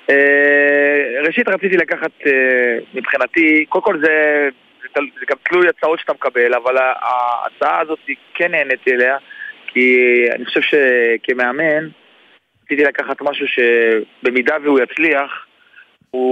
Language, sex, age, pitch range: Hebrew, male, 30-49, 130-170 Hz